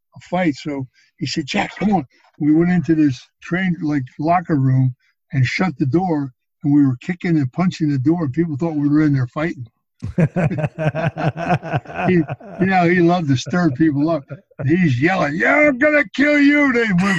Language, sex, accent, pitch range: English, male, American, 145-180 Hz